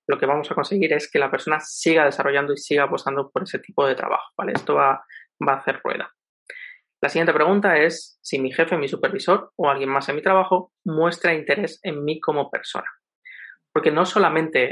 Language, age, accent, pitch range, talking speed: Spanish, 30-49, Spanish, 140-175 Hz, 205 wpm